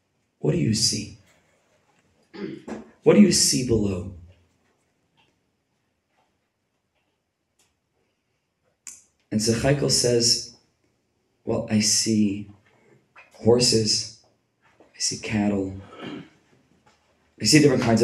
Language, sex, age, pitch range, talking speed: English, male, 30-49, 100-120 Hz, 75 wpm